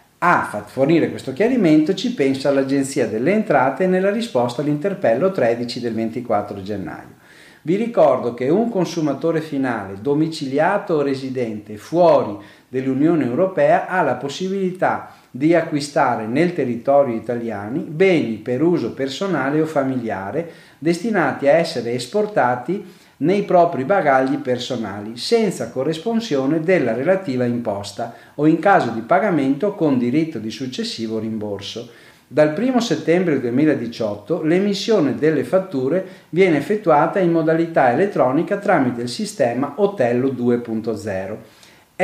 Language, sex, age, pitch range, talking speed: Italian, male, 40-59, 120-185 Hz, 120 wpm